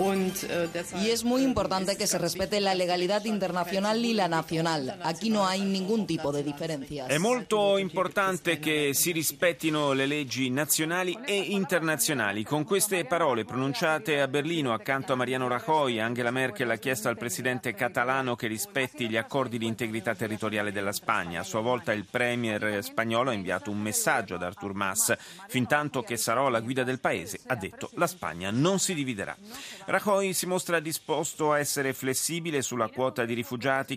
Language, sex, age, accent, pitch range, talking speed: Italian, male, 30-49, native, 115-165 Hz, 135 wpm